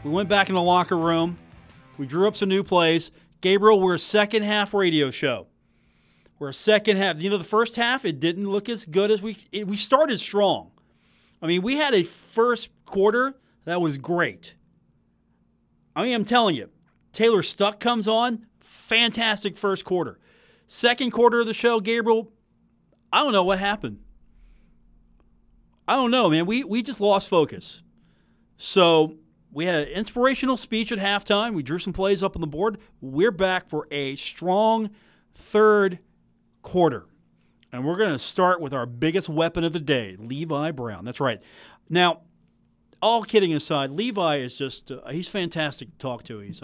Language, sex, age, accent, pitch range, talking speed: English, male, 40-59, American, 135-210 Hz, 170 wpm